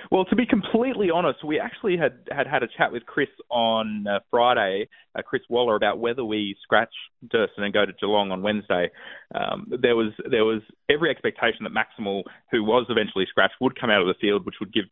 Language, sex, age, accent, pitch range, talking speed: English, male, 20-39, Australian, 100-120 Hz, 215 wpm